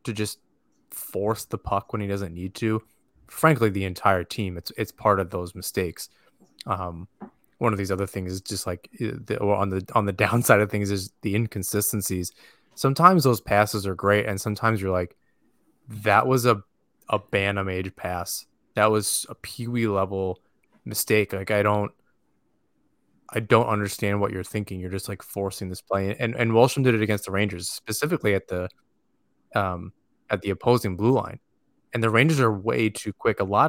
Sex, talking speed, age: male, 185 wpm, 20-39